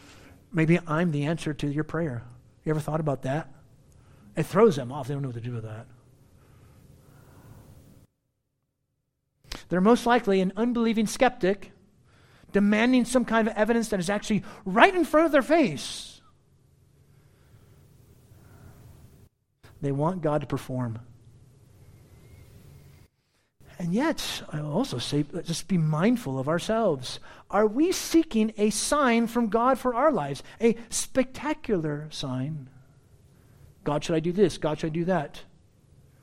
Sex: male